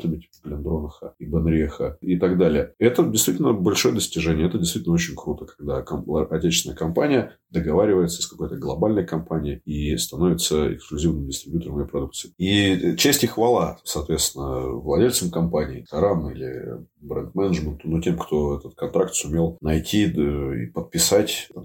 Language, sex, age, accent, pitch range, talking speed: Russian, male, 30-49, native, 75-90 Hz, 140 wpm